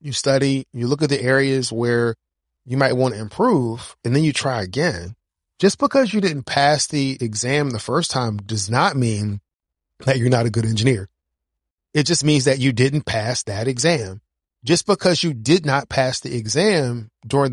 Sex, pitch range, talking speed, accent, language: male, 110-150 Hz, 190 wpm, American, English